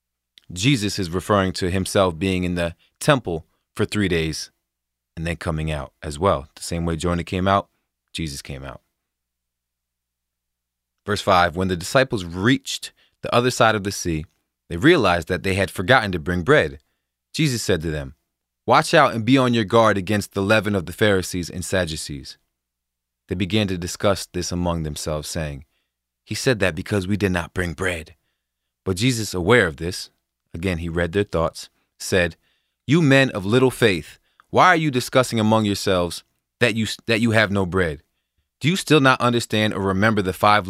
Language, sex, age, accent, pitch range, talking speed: English, male, 30-49, American, 80-115 Hz, 180 wpm